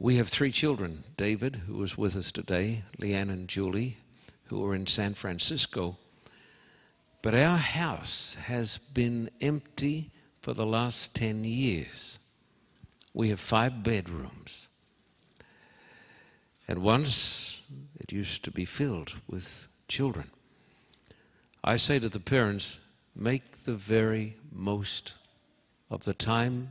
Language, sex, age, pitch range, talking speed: English, male, 60-79, 100-130 Hz, 120 wpm